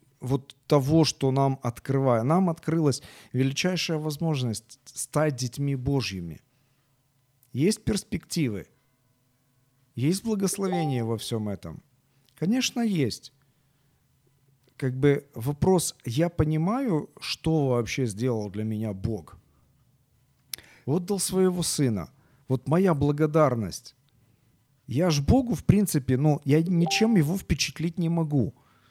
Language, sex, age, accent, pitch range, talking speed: Ukrainian, male, 40-59, native, 125-155 Hz, 105 wpm